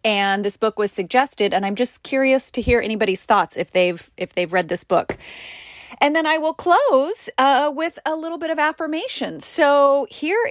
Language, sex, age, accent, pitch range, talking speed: English, female, 30-49, American, 225-315 Hz, 195 wpm